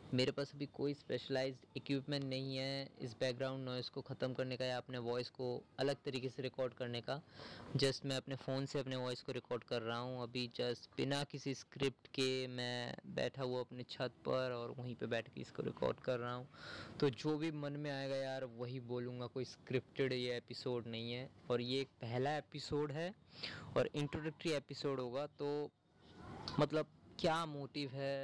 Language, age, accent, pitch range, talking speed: Hindi, 20-39, native, 125-140 Hz, 185 wpm